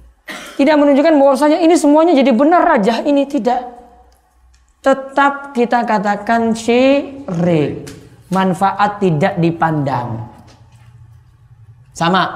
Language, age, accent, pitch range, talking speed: Indonesian, 20-39, native, 145-240 Hz, 85 wpm